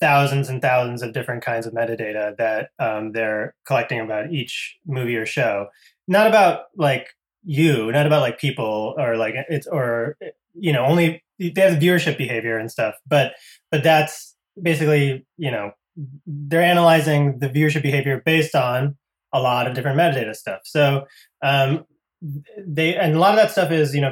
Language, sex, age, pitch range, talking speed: English, male, 20-39, 120-155 Hz, 175 wpm